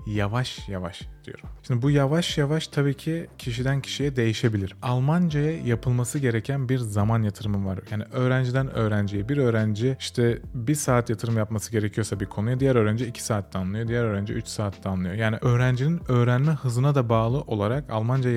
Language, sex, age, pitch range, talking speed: Turkish, male, 30-49, 110-135 Hz, 165 wpm